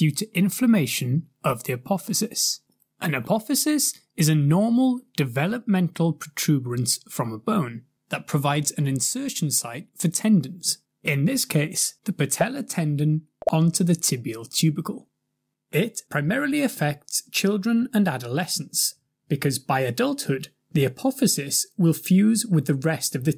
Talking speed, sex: 130 wpm, male